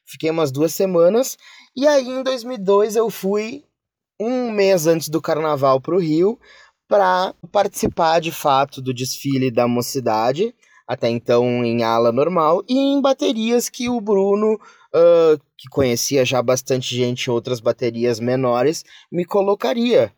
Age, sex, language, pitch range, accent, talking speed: 20-39, male, Portuguese, 130-190 Hz, Brazilian, 145 wpm